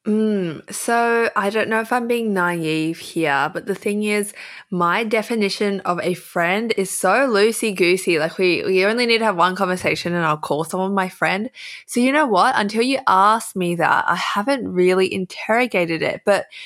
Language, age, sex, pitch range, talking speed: English, 20-39, female, 170-225 Hz, 190 wpm